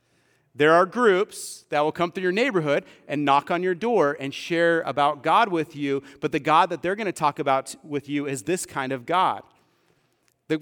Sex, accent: male, American